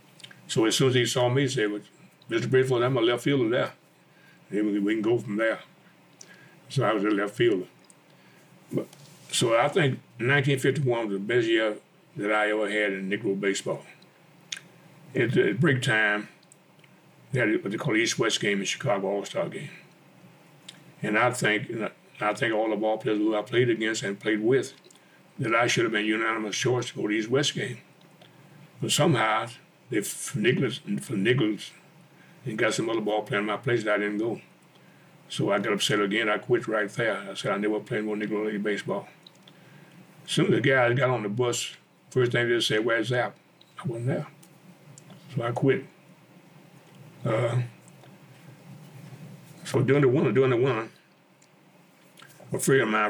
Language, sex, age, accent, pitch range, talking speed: English, male, 60-79, American, 110-155 Hz, 180 wpm